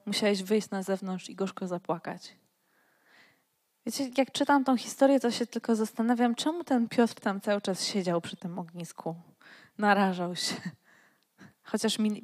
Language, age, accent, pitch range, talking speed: Polish, 20-39, native, 190-230 Hz, 140 wpm